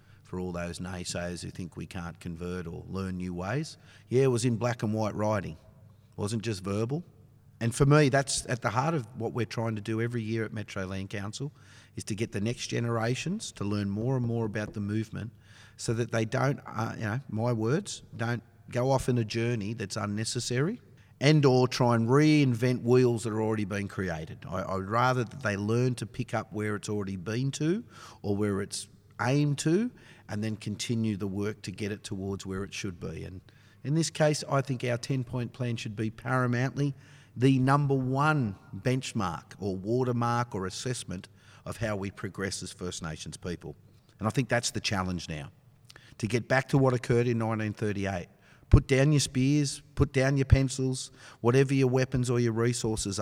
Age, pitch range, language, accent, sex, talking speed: 30-49, 105-130 Hz, English, Australian, male, 195 wpm